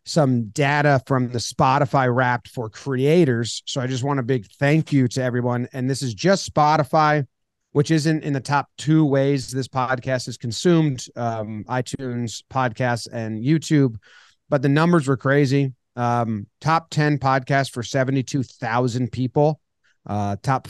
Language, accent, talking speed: English, American, 155 wpm